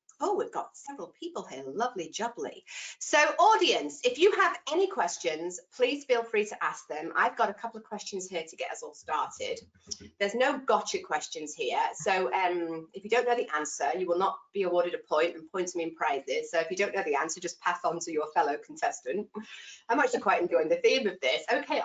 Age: 30-49